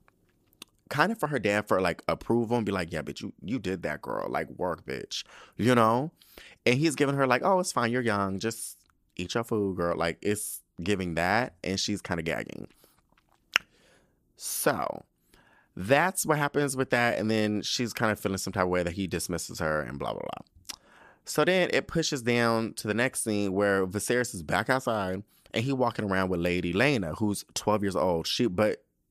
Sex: male